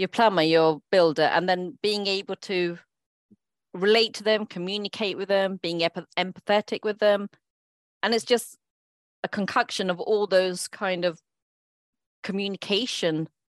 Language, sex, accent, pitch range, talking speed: English, female, British, 155-205 Hz, 135 wpm